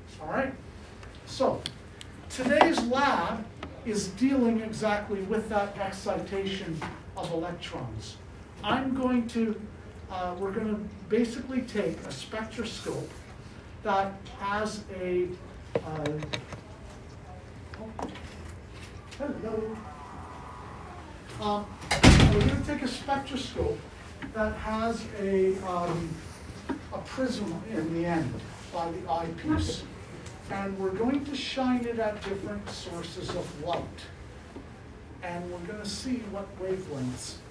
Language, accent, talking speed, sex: English, American, 105 wpm, male